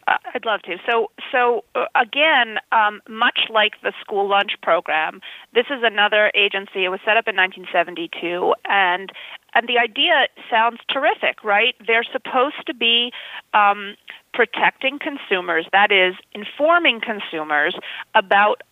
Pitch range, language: 195-245 Hz, English